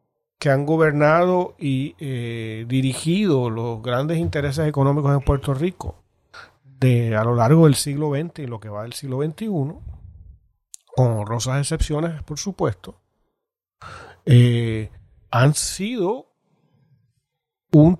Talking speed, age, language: 120 wpm, 40-59, Spanish